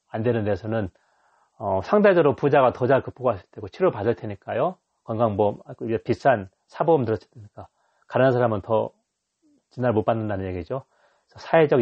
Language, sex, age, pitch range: Korean, male, 30-49, 110-145 Hz